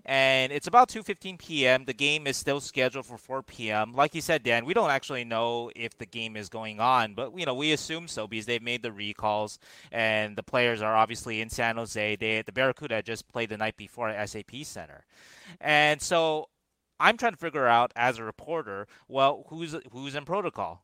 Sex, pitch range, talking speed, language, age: male, 110-140 Hz, 205 wpm, English, 20-39